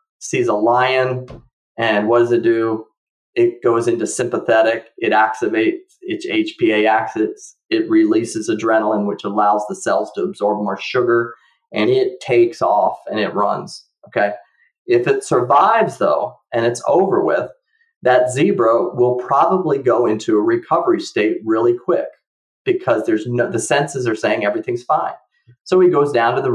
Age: 30-49